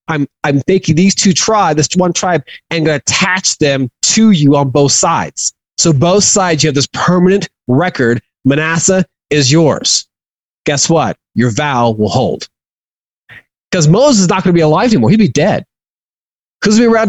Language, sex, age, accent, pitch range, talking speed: English, male, 30-49, American, 130-180 Hz, 185 wpm